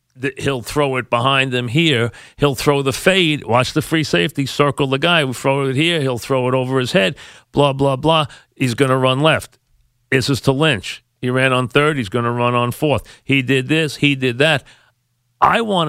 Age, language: 40-59, English